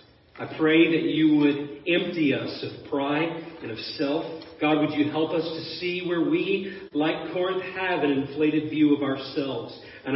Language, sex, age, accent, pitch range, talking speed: English, male, 40-59, American, 140-165 Hz, 175 wpm